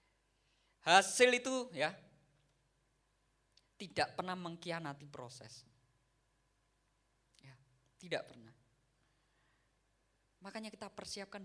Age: 10-29